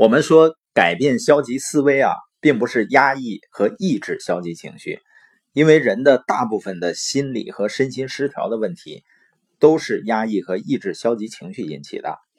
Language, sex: Chinese, male